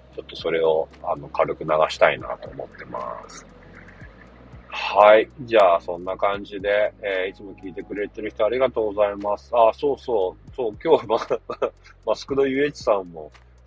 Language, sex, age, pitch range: Japanese, male, 40-59, 75-105 Hz